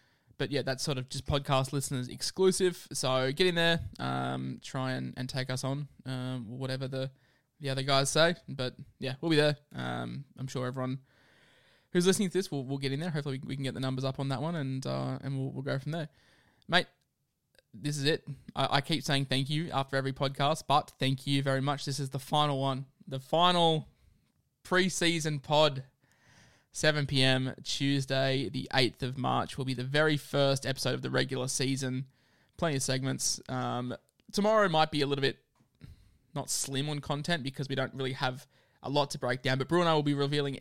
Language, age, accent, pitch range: English, 20-39, Australian, 130-150 Hz